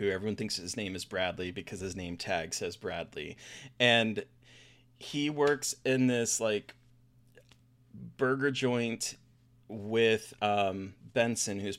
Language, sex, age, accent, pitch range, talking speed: English, male, 30-49, American, 100-130 Hz, 125 wpm